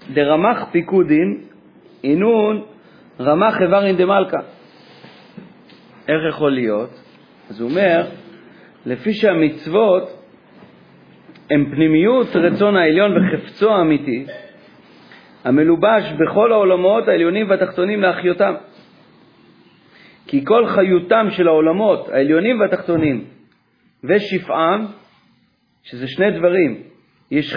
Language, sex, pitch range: Hebrew, male, 155-200 Hz